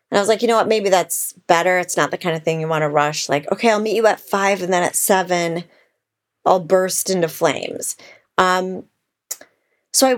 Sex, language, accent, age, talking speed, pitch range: female, English, American, 30-49, 220 wpm, 165-200 Hz